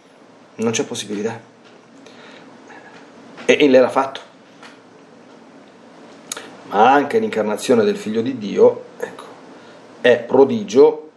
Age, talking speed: 40-59, 85 wpm